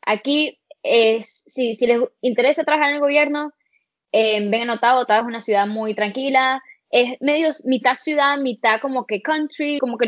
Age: 10-29